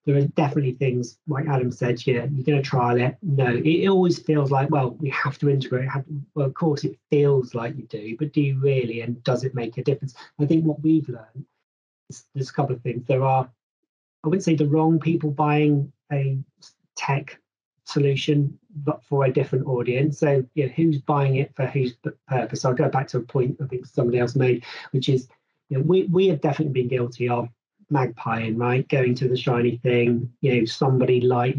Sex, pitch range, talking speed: male, 125-150 Hz, 220 wpm